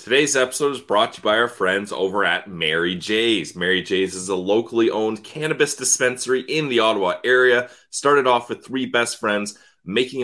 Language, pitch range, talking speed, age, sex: English, 105-140 Hz, 190 wpm, 30-49, male